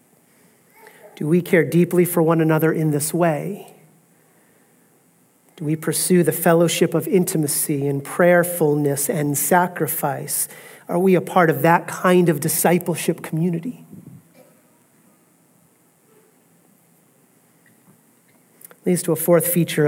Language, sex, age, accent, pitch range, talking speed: English, male, 40-59, American, 155-185 Hz, 110 wpm